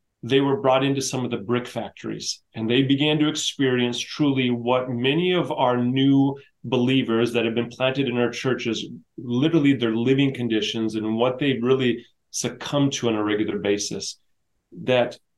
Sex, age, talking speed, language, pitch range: male, 30-49, 170 wpm, English, 115-135 Hz